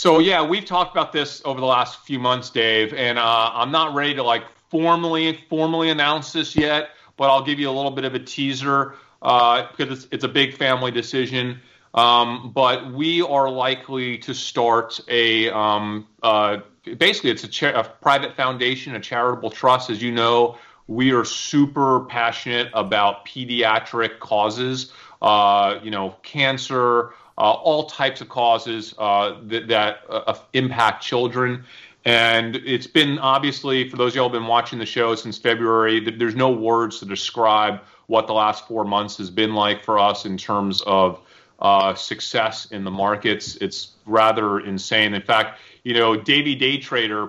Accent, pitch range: American, 110-130 Hz